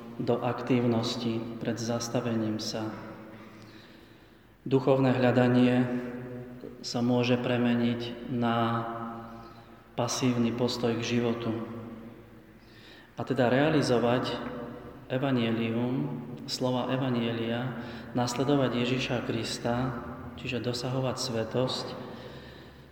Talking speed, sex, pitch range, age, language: 70 wpm, male, 115-125 Hz, 30-49, Slovak